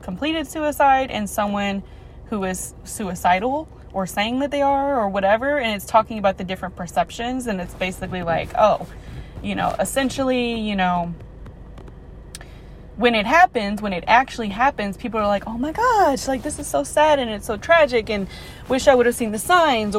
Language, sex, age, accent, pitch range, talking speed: English, female, 20-39, American, 205-275 Hz, 185 wpm